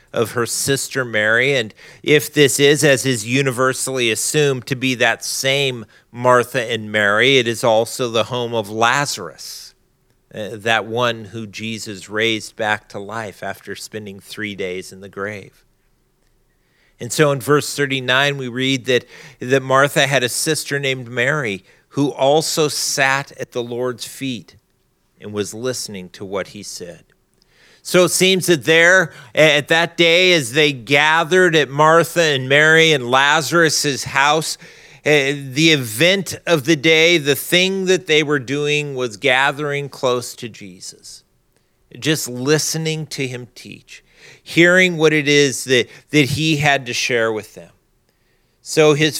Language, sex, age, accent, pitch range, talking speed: English, male, 40-59, American, 120-150 Hz, 150 wpm